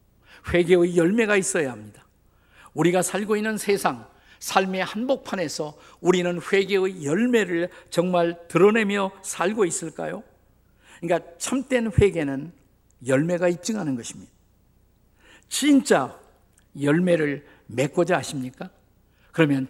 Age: 50-69